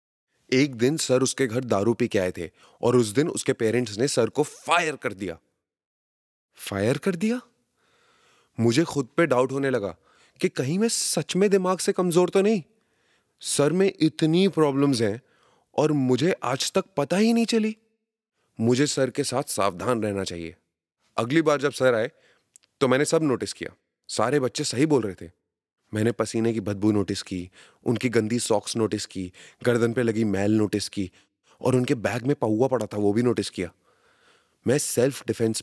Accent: native